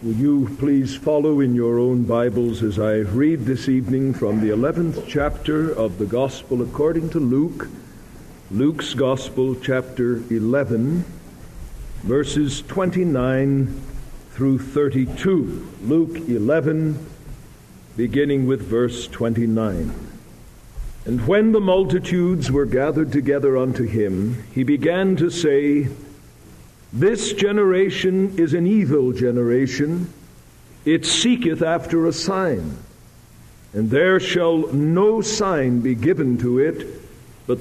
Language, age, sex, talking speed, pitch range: English, 60-79, male, 115 wpm, 125-165 Hz